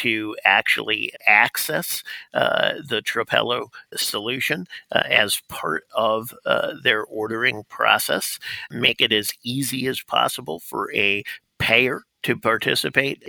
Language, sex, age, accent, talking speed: English, male, 50-69, American, 115 wpm